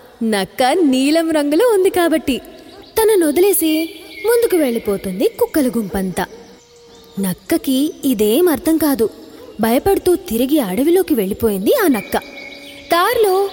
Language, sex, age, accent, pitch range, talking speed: Telugu, female, 20-39, native, 235-355 Hz, 95 wpm